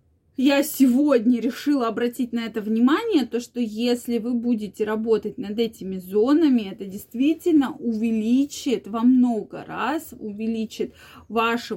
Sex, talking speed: female, 120 wpm